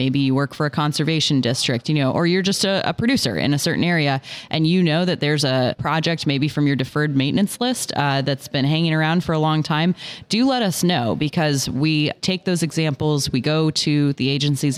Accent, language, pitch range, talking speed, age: American, English, 135-160 Hz, 225 wpm, 20-39